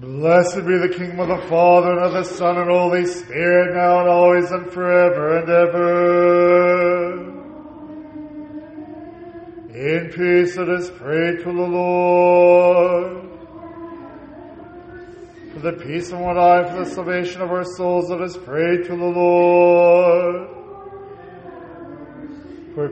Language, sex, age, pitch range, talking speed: English, male, 40-59, 175-180 Hz, 125 wpm